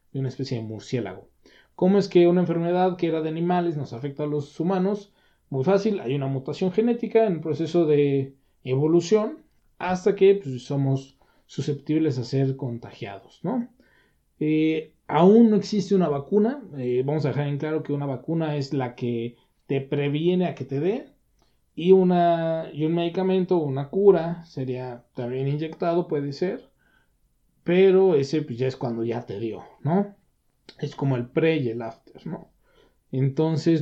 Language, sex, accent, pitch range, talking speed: Spanish, male, Mexican, 130-175 Hz, 165 wpm